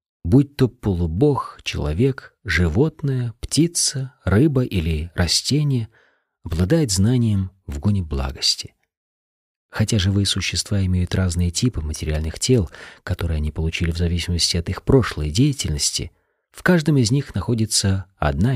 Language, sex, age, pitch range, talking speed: Russian, male, 40-59, 85-120 Hz, 120 wpm